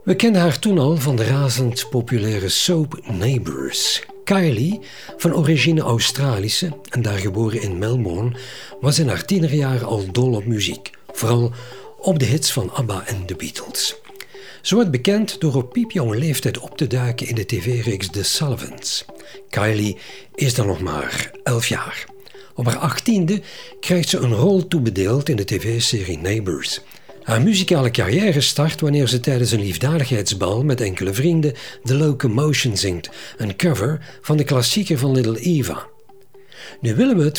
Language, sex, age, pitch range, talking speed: Dutch, male, 50-69, 115-170 Hz, 155 wpm